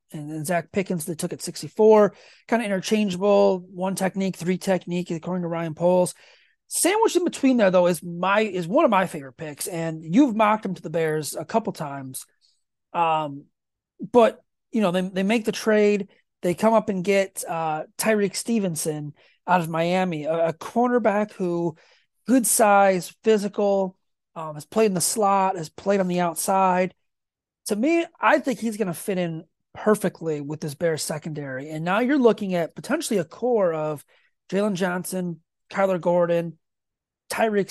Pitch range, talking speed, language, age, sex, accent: 165-210 Hz, 170 wpm, English, 30-49, male, American